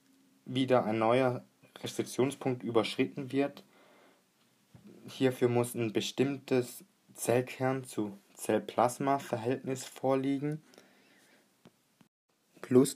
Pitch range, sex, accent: 100-125 Hz, male, German